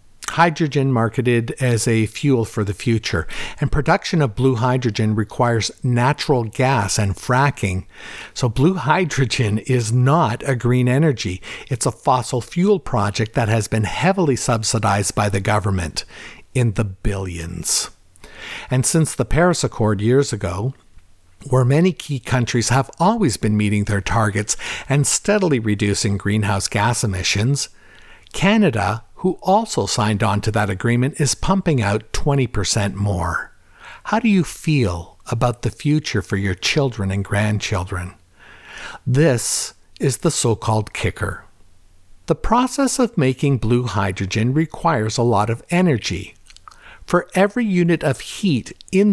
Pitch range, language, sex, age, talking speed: 105-145 Hz, English, male, 60-79, 135 wpm